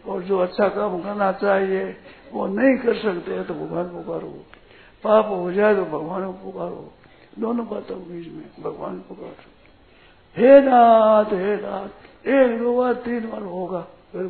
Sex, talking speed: male, 160 wpm